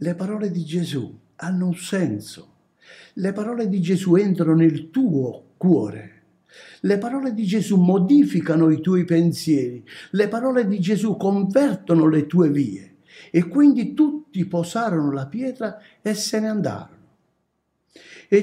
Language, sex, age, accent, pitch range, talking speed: Italian, male, 60-79, native, 150-220 Hz, 135 wpm